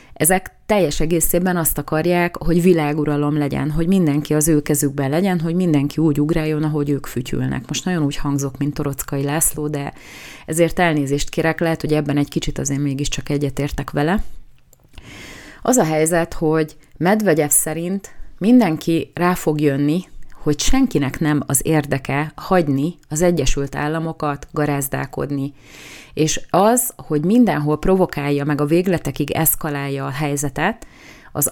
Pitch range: 145-165 Hz